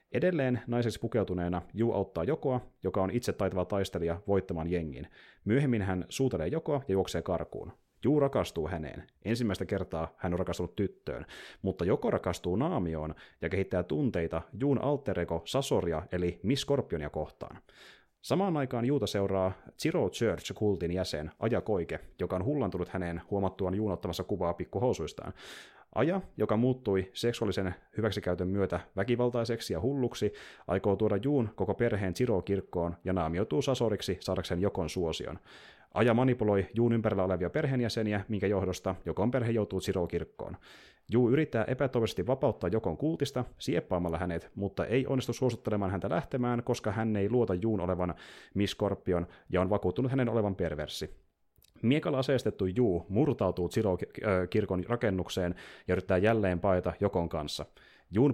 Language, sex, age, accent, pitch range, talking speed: Finnish, male, 30-49, native, 90-120 Hz, 135 wpm